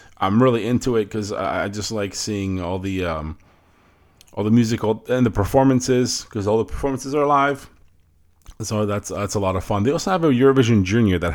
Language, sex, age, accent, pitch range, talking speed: English, male, 30-49, American, 85-105 Hz, 200 wpm